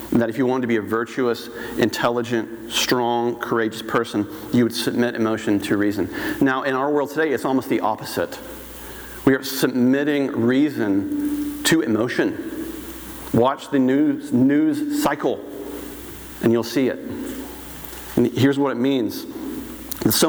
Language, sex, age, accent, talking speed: English, male, 40-59, American, 140 wpm